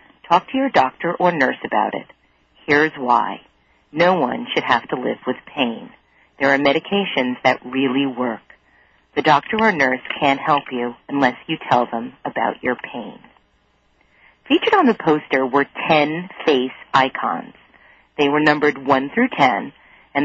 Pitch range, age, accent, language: 130-175 Hz, 40-59, American, English